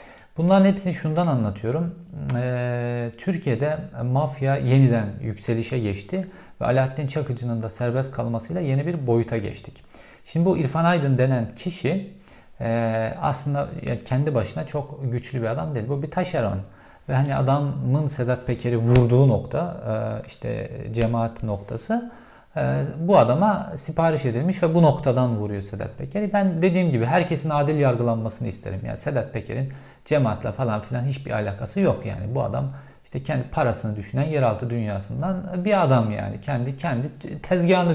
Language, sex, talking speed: Turkish, male, 145 wpm